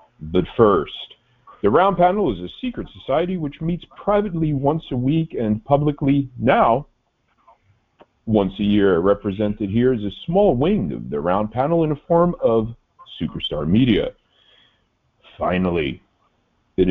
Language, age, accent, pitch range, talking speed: English, 40-59, American, 100-160 Hz, 140 wpm